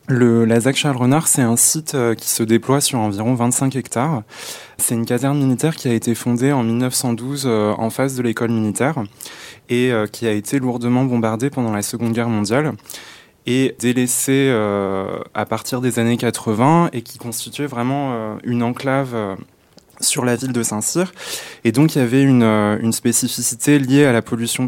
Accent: French